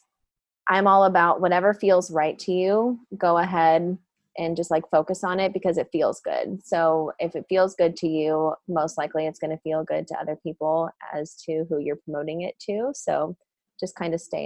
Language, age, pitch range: English, 20-39, 155-180 Hz